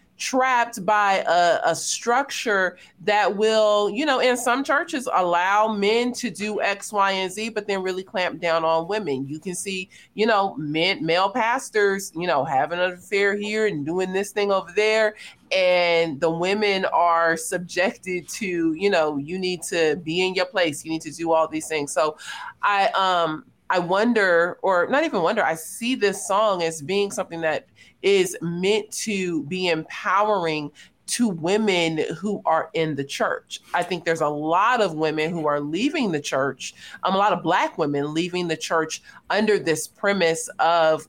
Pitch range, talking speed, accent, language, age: 160-210 Hz, 180 wpm, American, English, 30-49